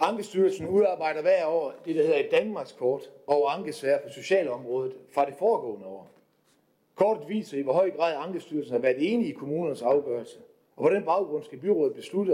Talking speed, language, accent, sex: 175 wpm, Danish, native, male